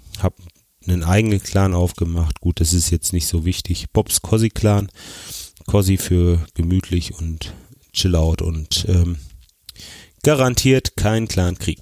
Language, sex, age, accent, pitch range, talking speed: German, male, 30-49, German, 85-105 Hz, 130 wpm